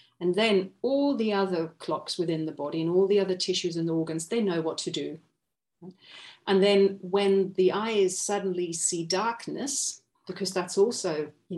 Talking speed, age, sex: 175 wpm, 40-59, female